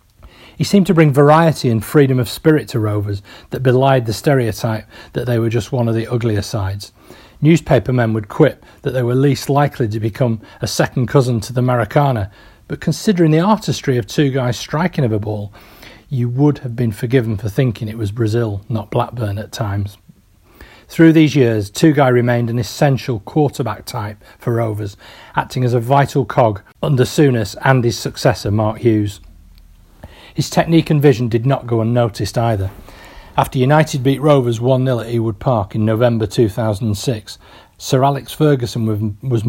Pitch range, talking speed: 105-135 Hz, 170 wpm